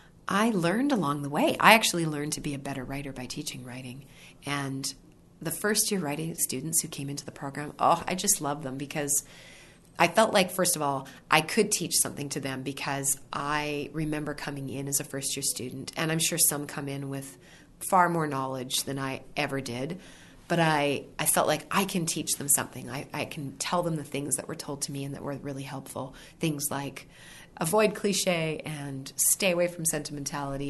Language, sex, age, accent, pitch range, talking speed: English, female, 30-49, American, 140-165 Hz, 200 wpm